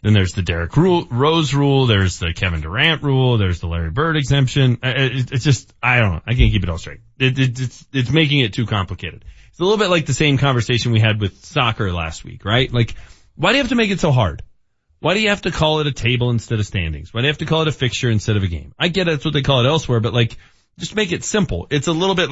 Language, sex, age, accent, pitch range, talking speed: English, male, 30-49, American, 110-155 Hz, 275 wpm